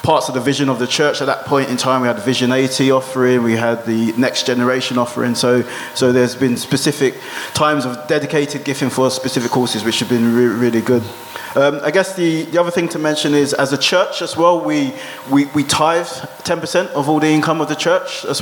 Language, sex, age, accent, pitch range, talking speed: English, male, 20-39, British, 125-150 Hz, 225 wpm